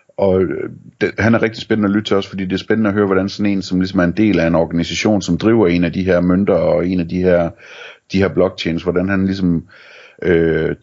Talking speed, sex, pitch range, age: 250 wpm, male, 85-95 Hz, 30-49